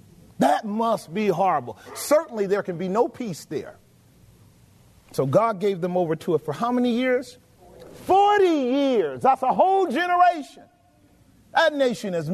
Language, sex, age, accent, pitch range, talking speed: English, male, 40-59, American, 200-295 Hz, 150 wpm